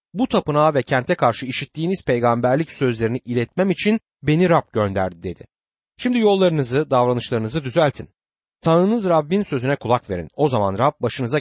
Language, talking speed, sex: Turkish, 140 wpm, male